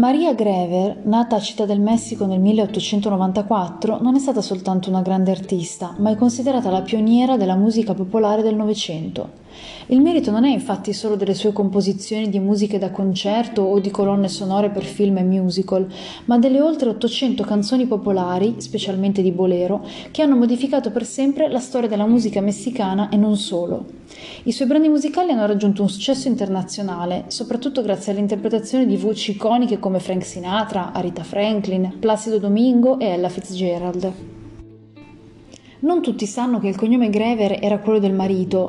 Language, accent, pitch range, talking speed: Italian, native, 195-240 Hz, 165 wpm